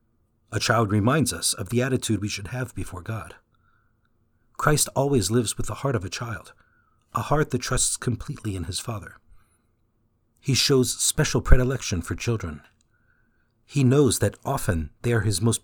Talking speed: 165 wpm